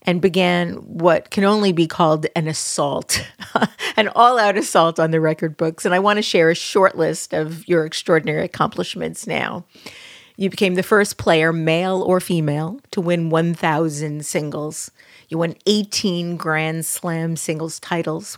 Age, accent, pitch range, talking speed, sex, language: 40-59, American, 160-180 Hz, 155 wpm, female, English